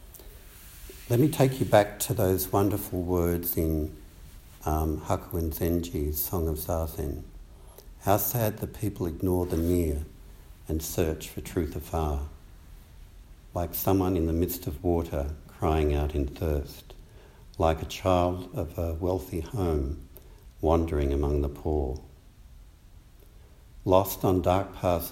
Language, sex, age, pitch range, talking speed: English, male, 60-79, 80-95 Hz, 125 wpm